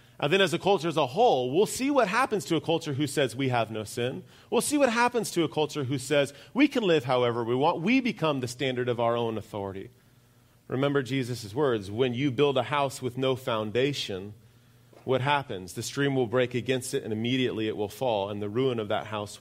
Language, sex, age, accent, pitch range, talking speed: English, male, 30-49, American, 120-155 Hz, 230 wpm